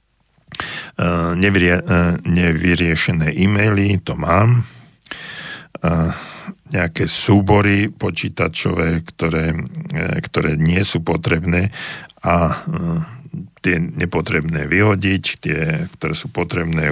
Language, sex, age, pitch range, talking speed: Slovak, male, 50-69, 85-105 Hz, 70 wpm